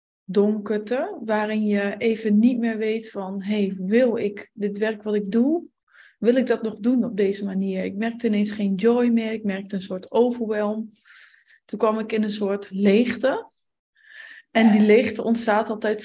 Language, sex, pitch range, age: Dutch, female, 210-235 Hz, 20-39